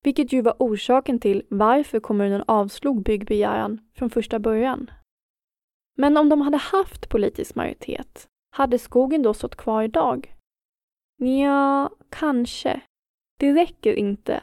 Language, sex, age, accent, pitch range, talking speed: Swedish, female, 20-39, native, 220-265 Hz, 125 wpm